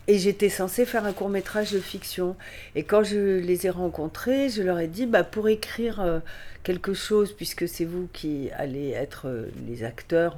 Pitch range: 170-215 Hz